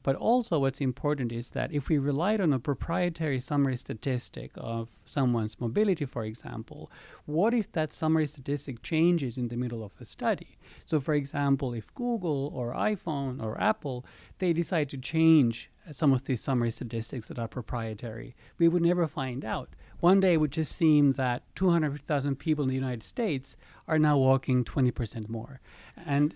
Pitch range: 120-155 Hz